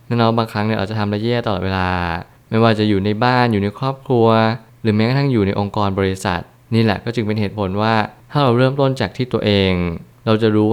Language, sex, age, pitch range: Thai, male, 20-39, 100-120 Hz